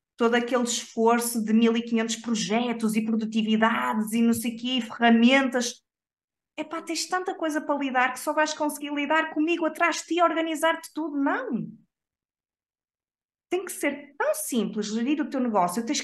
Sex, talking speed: female, 165 wpm